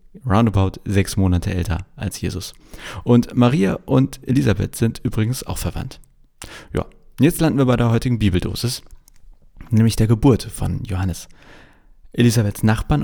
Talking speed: 135 wpm